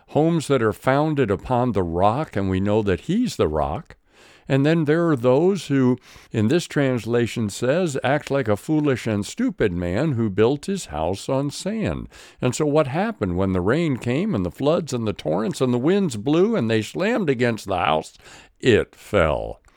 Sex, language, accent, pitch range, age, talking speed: male, English, American, 95-145 Hz, 60-79, 190 wpm